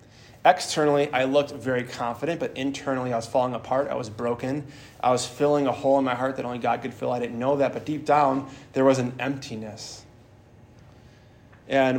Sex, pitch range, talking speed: male, 120-135 Hz, 195 wpm